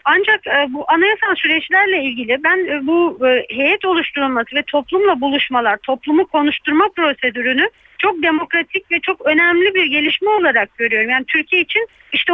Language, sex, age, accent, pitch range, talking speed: Turkish, female, 50-69, native, 280-360 Hz, 135 wpm